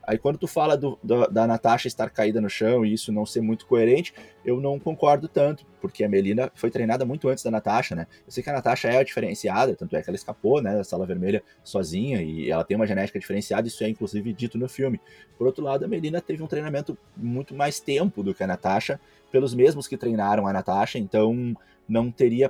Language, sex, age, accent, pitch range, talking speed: Portuguese, male, 20-39, Brazilian, 110-135 Hz, 230 wpm